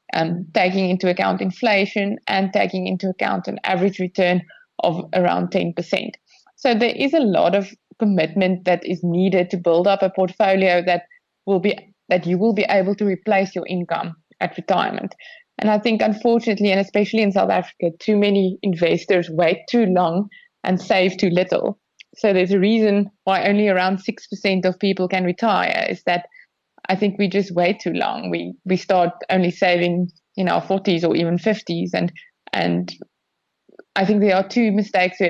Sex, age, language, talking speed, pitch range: female, 20-39, English, 175 wpm, 180-205 Hz